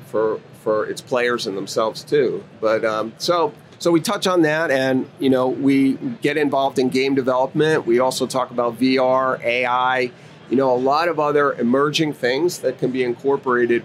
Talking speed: 180 wpm